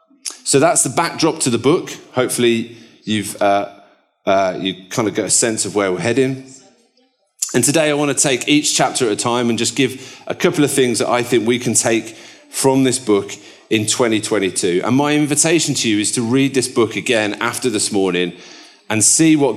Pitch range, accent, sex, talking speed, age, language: 110-140 Hz, British, male, 205 wpm, 30-49, English